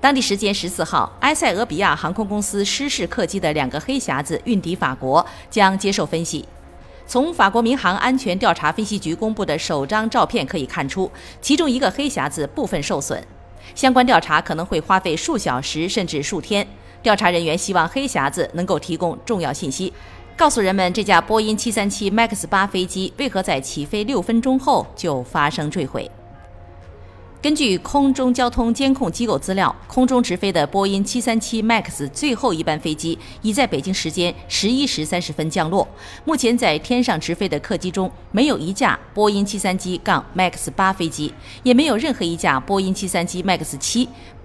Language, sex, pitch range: Chinese, female, 165-230 Hz